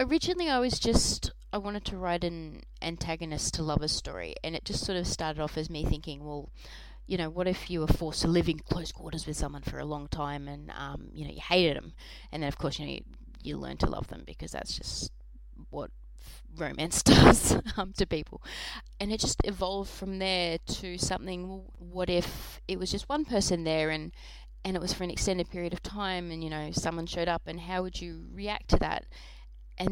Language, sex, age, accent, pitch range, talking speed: English, female, 20-39, Australian, 150-185 Hz, 220 wpm